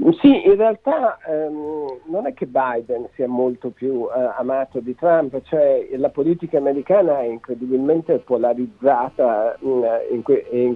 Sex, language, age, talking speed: male, Italian, 60-79, 140 wpm